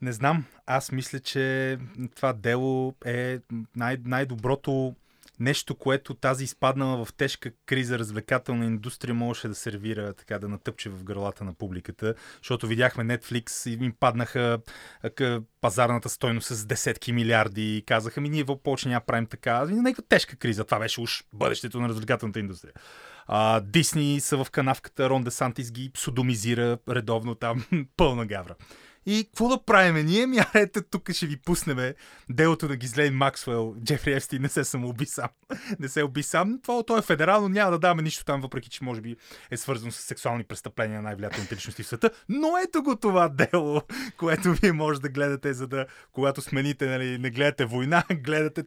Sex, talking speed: male, 165 wpm